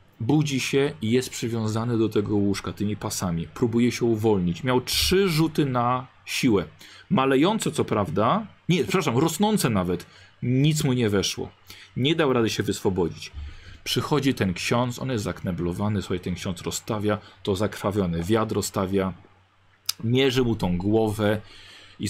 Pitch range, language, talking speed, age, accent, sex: 95-125 Hz, Polish, 140 wpm, 40-59, native, male